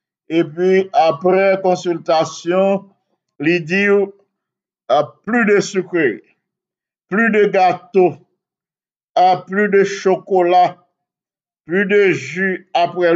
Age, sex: 60-79, male